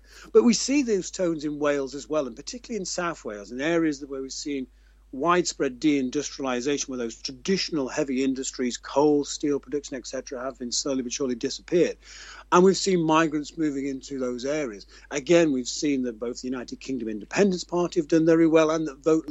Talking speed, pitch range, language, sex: 190 wpm, 130-170 Hz, English, male